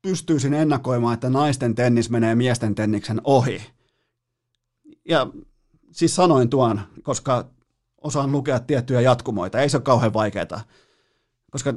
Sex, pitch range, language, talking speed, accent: male, 120-145 Hz, Finnish, 120 wpm, native